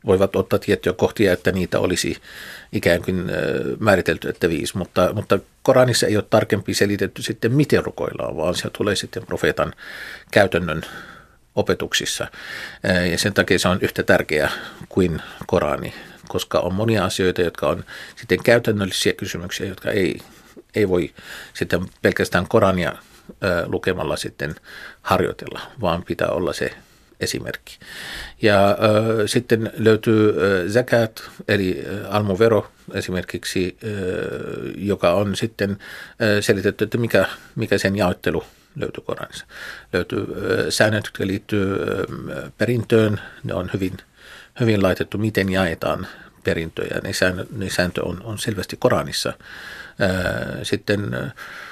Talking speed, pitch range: 125 wpm, 95-110 Hz